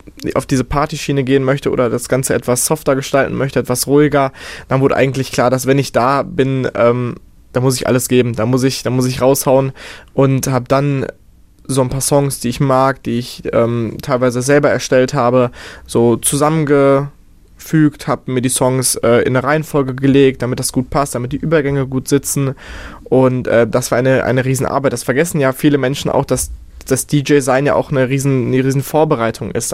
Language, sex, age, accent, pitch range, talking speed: German, male, 20-39, German, 125-140 Hz, 190 wpm